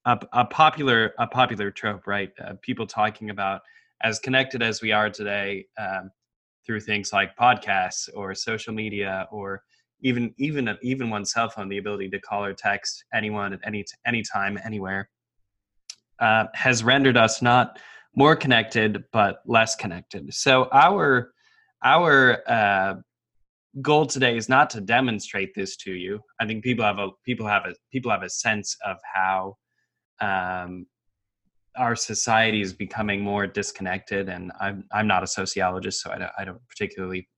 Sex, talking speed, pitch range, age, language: male, 160 wpm, 100-125 Hz, 20-39, English